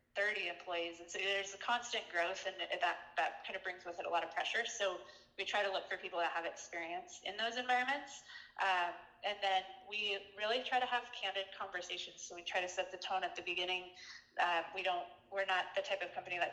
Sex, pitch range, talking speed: female, 175-210 Hz, 230 wpm